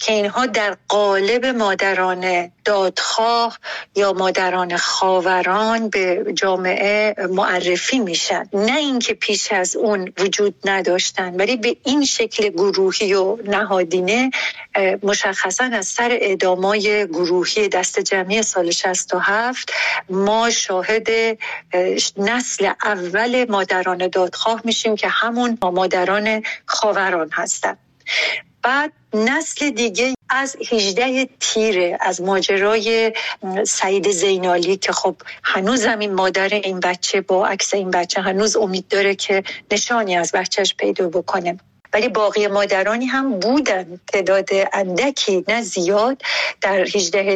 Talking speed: 115 wpm